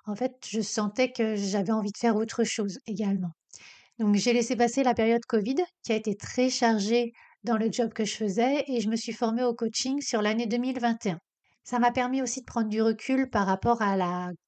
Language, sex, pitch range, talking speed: French, female, 210-245 Hz, 215 wpm